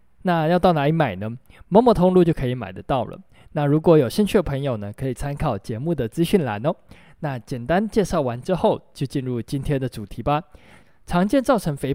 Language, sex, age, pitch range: Chinese, male, 20-39, 125-180 Hz